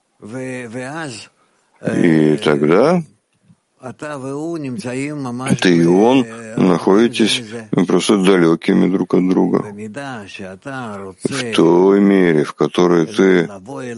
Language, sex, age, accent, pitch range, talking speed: Russian, male, 50-69, native, 85-125 Hz, 75 wpm